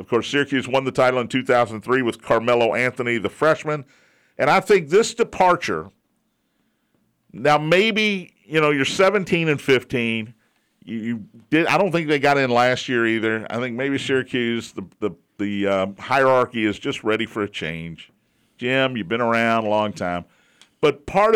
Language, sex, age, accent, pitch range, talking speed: English, male, 50-69, American, 115-145 Hz, 175 wpm